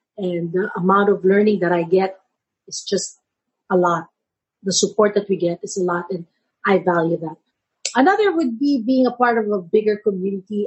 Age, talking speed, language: 40-59, 190 wpm, English